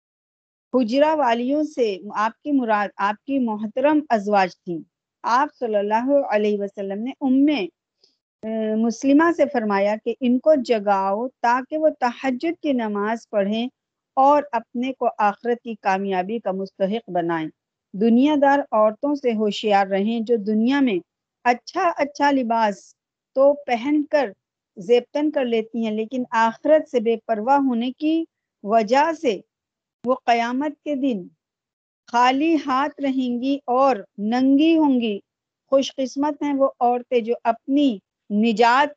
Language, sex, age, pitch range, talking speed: Urdu, female, 50-69, 210-270 Hz, 135 wpm